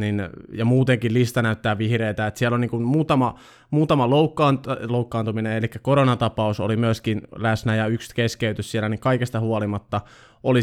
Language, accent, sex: Finnish, native, male